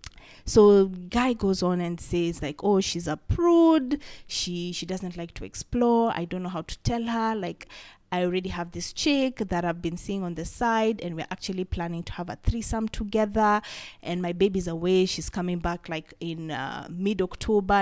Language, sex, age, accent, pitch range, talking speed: English, female, 20-39, South African, 175-220 Hz, 190 wpm